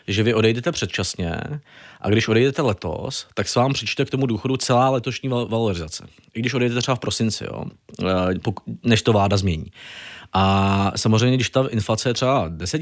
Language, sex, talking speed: Czech, male, 170 wpm